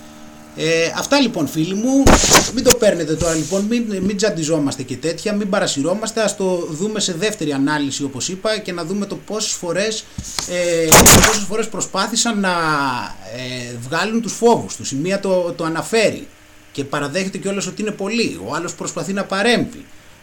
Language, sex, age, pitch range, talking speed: Greek, male, 30-49, 155-215 Hz, 170 wpm